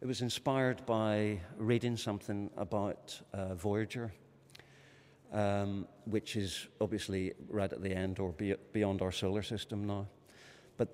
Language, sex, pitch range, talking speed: English, male, 100-115 Hz, 130 wpm